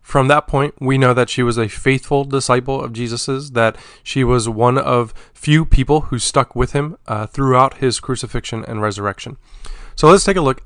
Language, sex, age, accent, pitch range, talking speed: English, male, 30-49, American, 110-140 Hz, 195 wpm